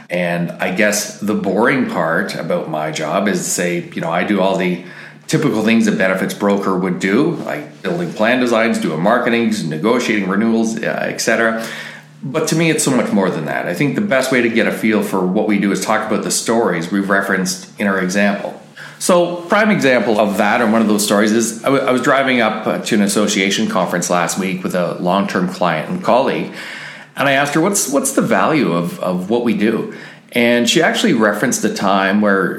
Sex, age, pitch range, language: male, 40-59, 95-115 Hz, English